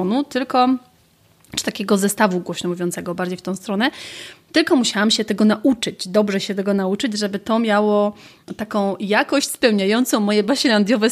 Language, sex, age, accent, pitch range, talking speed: Polish, female, 30-49, native, 195-235 Hz, 140 wpm